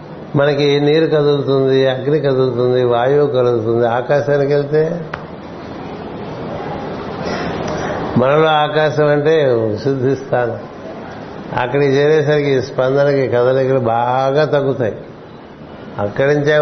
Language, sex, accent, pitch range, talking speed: Telugu, male, native, 125-145 Hz, 80 wpm